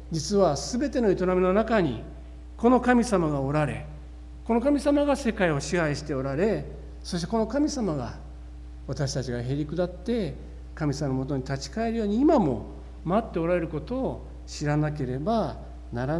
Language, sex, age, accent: Japanese, male, 60-79, native